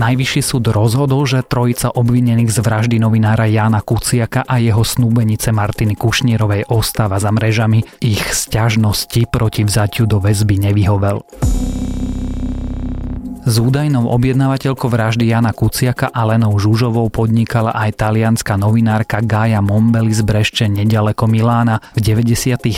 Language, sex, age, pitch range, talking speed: Slovak, male, 30-49, 105-120 Hz, 125 wpm